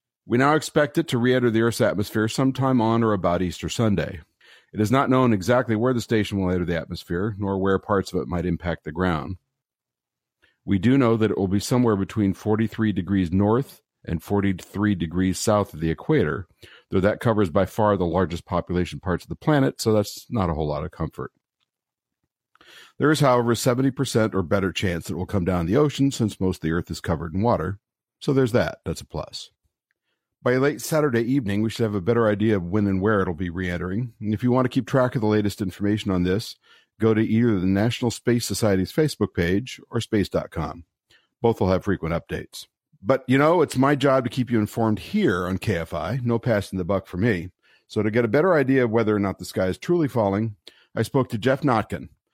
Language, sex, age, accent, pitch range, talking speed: English, male, 50-69, American, 95-125 Hz, 220 wpm